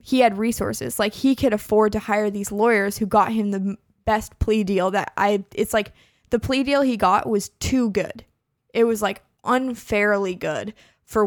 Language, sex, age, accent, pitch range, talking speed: English, female, 20-39, American, 200-235 Hz, 190 wpm